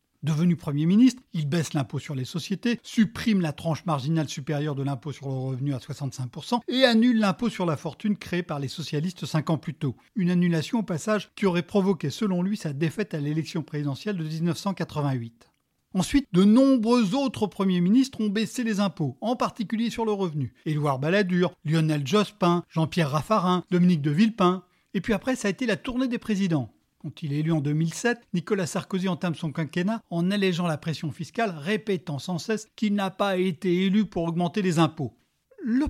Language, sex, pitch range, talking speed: French, male, 160-215 Hz, 190 wpm